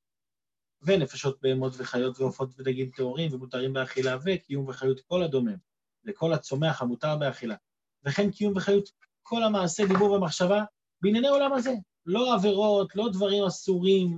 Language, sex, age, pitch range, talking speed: Hebrew, male, 30-49, 150-230 Hz, 130 wpm